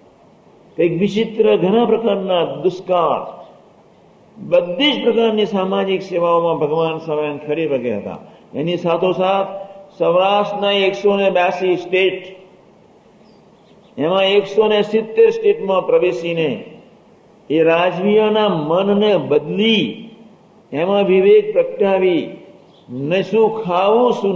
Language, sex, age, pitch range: Gujarati, male, 60-79, 170-210 Hz